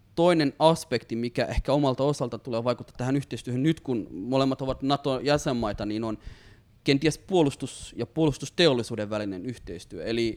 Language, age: Finnish, 20-39